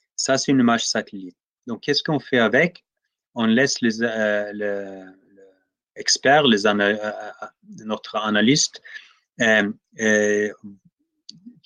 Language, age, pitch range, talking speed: French, 30-49, 105-145 Hz, 125 wpm